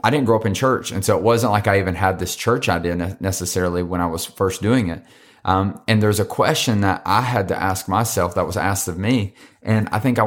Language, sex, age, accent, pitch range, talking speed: English, male, 30-49, American, 95-115 Hz, 265 wpm